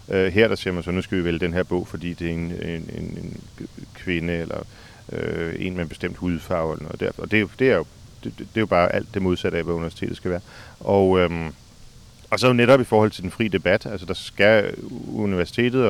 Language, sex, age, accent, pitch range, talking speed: Danish, male, 40-59, native, 85-105 Hz, 235 wpm